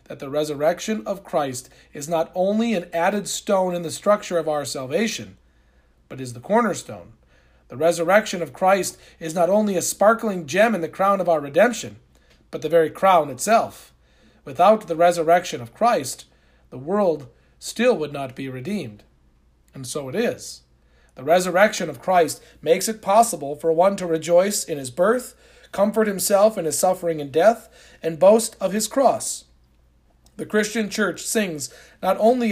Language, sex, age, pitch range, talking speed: English, male, 40-59, 140-210 Hz, 165 wpm